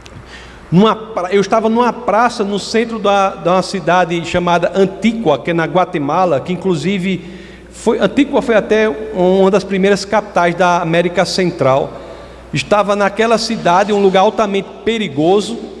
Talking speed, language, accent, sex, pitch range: 135 wpm, Portuguese, Brazilian, male, 185-240 Hz